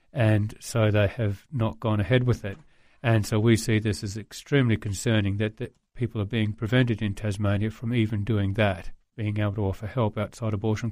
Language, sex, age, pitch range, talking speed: English, male, 40-59, 105-120 Hz, 200 wpm